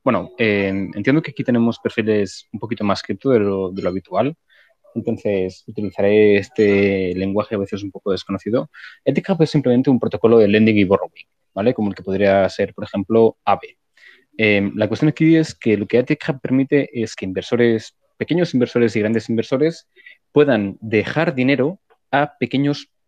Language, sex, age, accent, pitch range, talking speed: Spanish, male, 20-39, Spanish, 105-130 Hz, 175 wpm